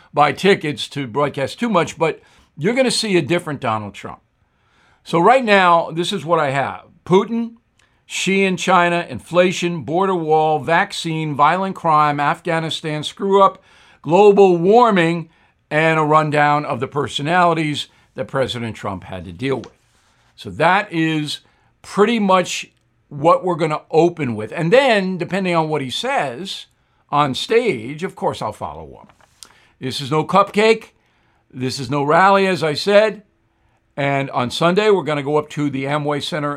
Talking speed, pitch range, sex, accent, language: 160 wpm, 140-185 Hz, male, American, English